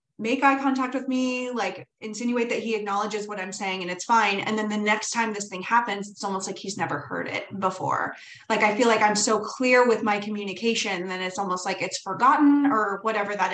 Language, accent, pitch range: English, American, 195-245 Hz